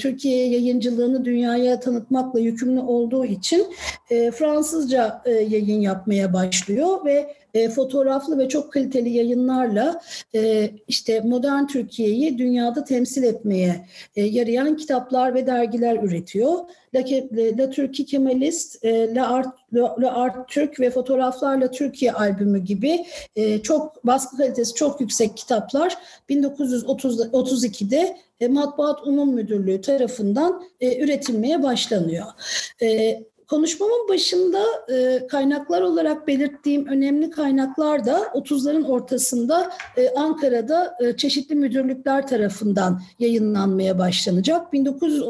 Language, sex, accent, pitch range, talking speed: Turkish, female, native, 230-285 Hz, 110 wpm